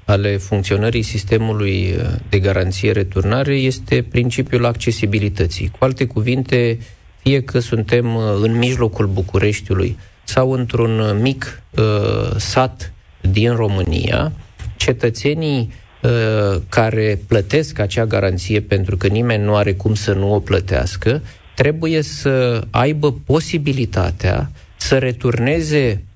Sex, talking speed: male, 100 wpm